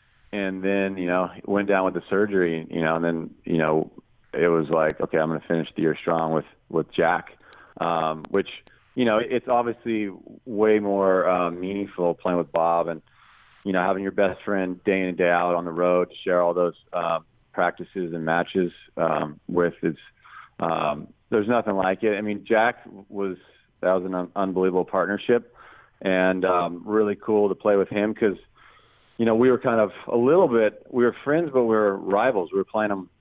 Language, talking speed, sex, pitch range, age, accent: English, 200 wpm, male, 85-100 Hz, 40-59, American